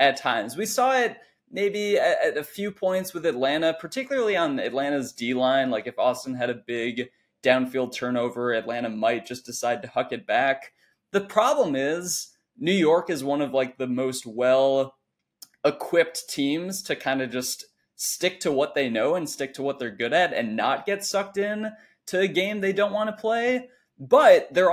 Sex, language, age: male, English, 20-39